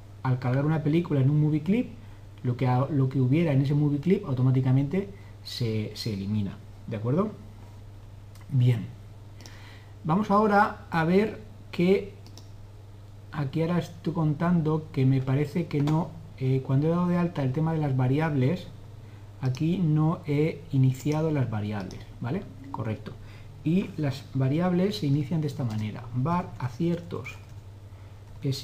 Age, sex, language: 40-59, male, Spanish